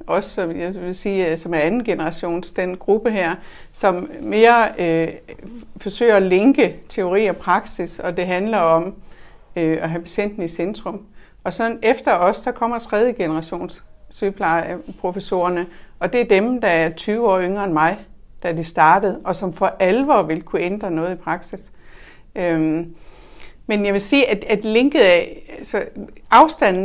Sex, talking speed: female, 165 wpm